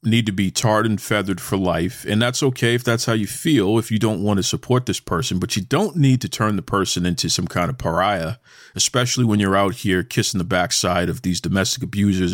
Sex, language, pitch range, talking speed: male, English, 95-120 Hz, 240 wpm